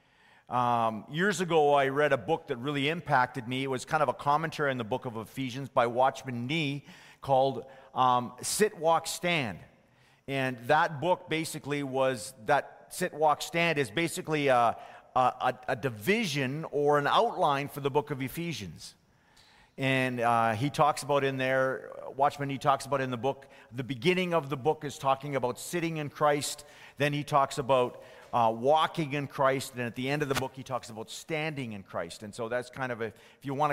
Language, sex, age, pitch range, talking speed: English, male, 40-59, 125-150 Hz, 190 wpm